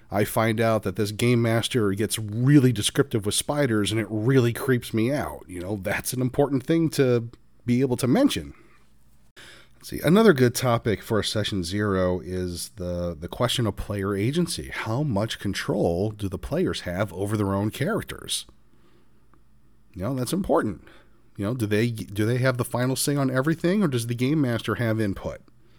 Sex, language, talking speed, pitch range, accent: male, English, 185 wpm, 100-125 Hz, American